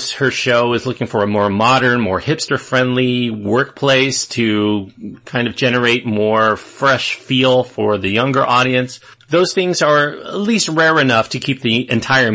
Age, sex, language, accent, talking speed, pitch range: 40-59, male, English, American, 160 wpm, 105-135 Hz